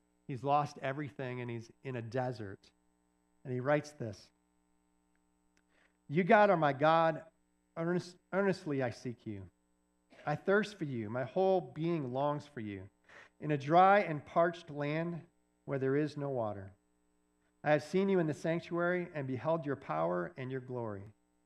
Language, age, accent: English, 50-69, American